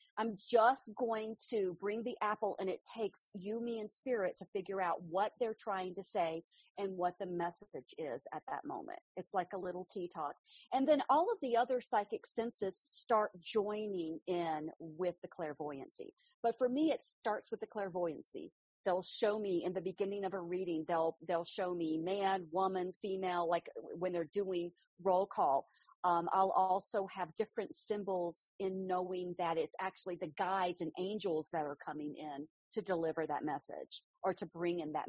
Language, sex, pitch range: English, female, 180-220 Hz